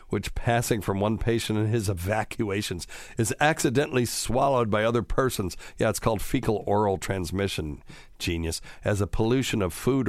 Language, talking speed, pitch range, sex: English, 150 wpm, 100-120 Hz, male